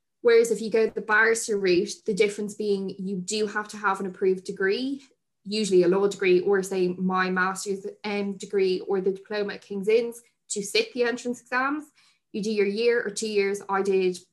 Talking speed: 195 wpm